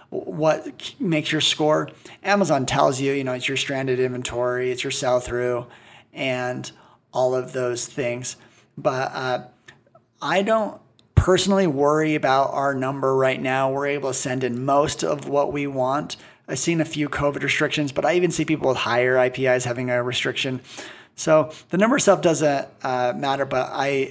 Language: English